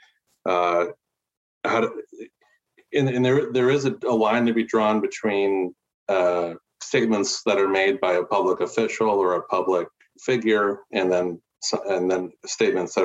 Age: 40-59